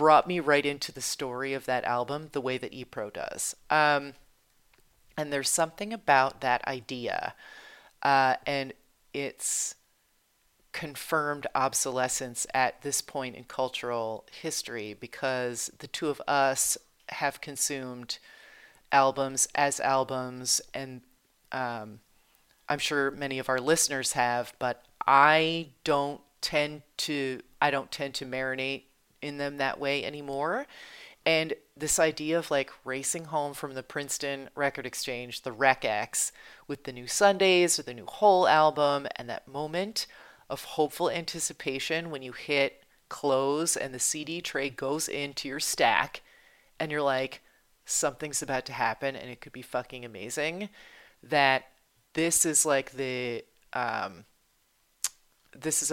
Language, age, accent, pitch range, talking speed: English, 40-59, American, 130-150 Hz, 135 wpm